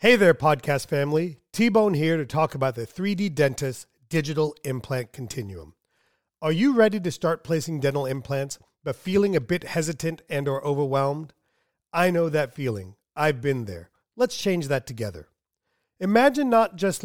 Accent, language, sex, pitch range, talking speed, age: American, English, male, 130-180 Hz, 160 wpm, 40-59